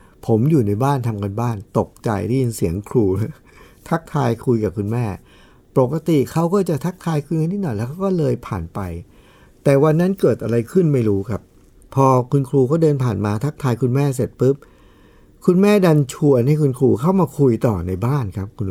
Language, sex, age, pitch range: Thai, male, 60-79, 115-165 Hz